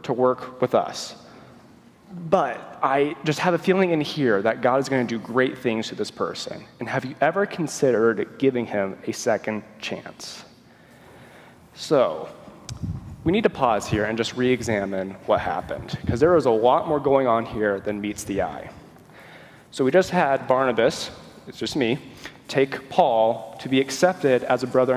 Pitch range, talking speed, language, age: 120-150 Hz, 170 wpm, English, 30-49